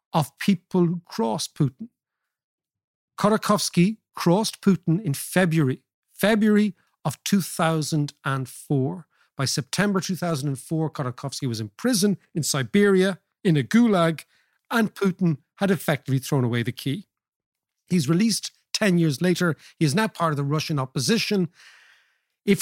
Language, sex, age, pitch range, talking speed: English, male, 50-69, 135-190 Hz, 125 wpm